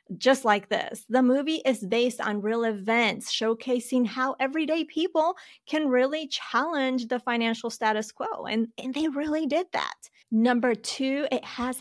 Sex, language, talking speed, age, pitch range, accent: female, English, 160 wpm, 30-49, 200-260 Hz, American